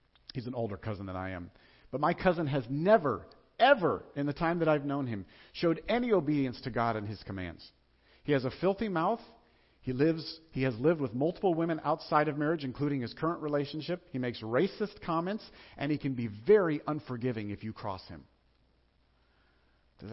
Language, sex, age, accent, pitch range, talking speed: English, male, 50-69, American, 100-150 Hz, 185 wpm